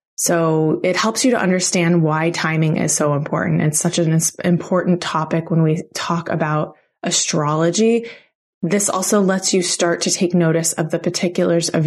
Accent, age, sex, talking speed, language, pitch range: American, 20-39, female, 165 wpm, English, 160-180 Hz